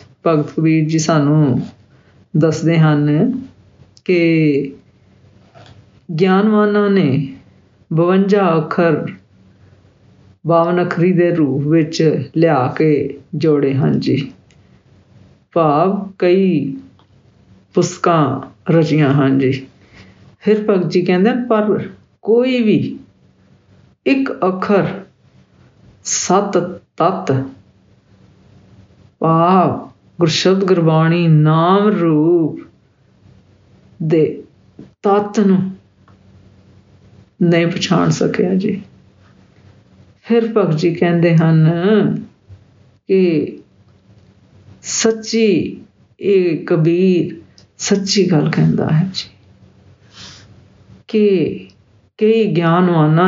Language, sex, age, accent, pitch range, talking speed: English, female, 50-69, Indian, 120-185 Hz, 70 wpm